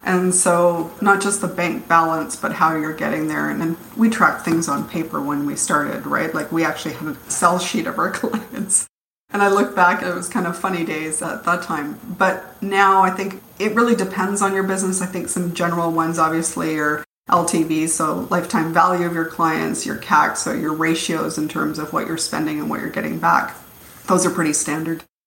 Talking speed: 215 wpm